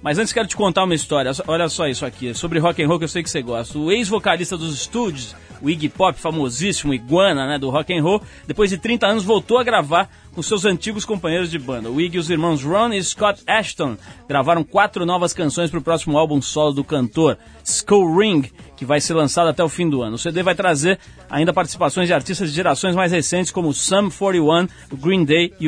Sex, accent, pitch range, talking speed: male, Brazilian, 150-195 Hz, 225 wpm